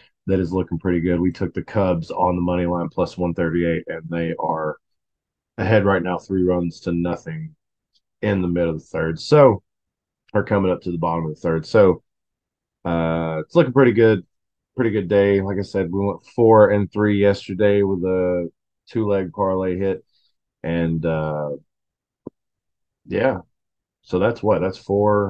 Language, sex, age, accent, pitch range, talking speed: English, male, 30-49, American, 85-105 Hz, 175 wpm